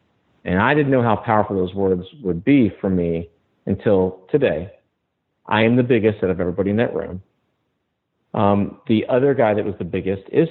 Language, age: English, 50-69